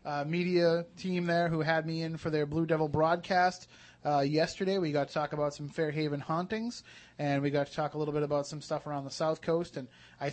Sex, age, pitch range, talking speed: male, 30-49, 140-160 Hz, 230 wpm